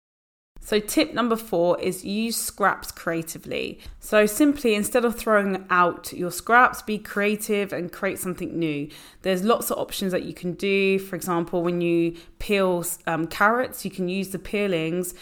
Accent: British